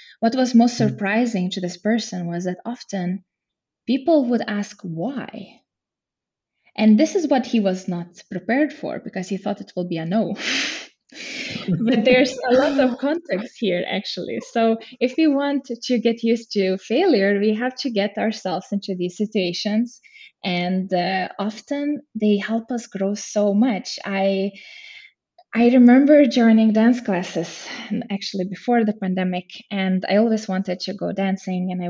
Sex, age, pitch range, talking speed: female, 20-39, 185-245 Hz, 160 wpm